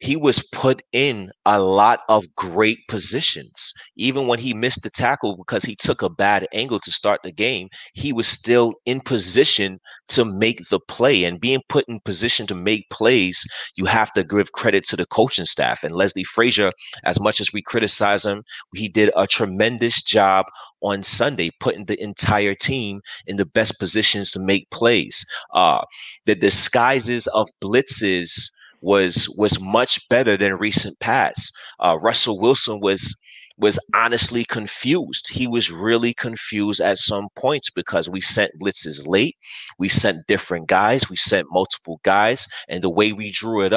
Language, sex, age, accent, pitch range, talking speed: English, male, 30-49, American, 100-120 Hz, 170 wpm